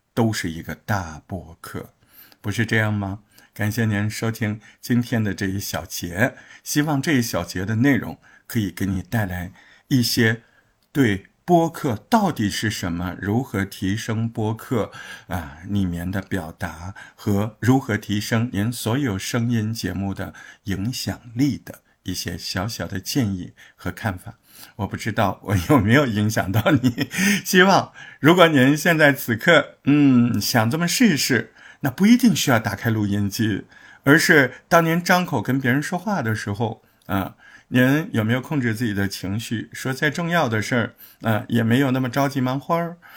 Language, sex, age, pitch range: Chinese, male, 50-69, 105-140 Hz